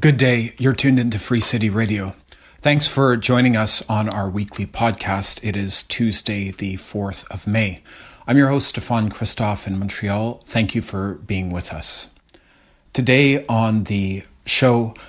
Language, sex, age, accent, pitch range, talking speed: English, male, 40-59, American, 95-115 Hz, 160 wpm